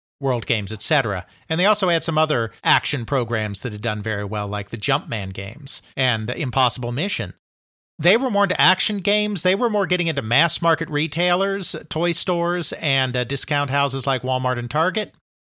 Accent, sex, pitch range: American, male, 120-165 Hz